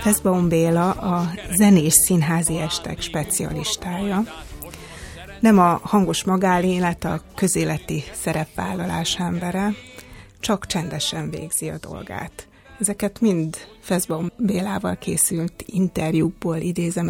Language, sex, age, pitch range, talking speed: Hungarian, female, 30-49, 160-190 Hz, 90 wpm